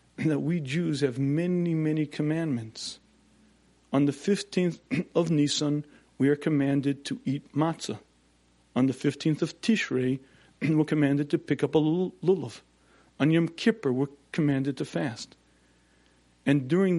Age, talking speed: 40-59, 140 wpm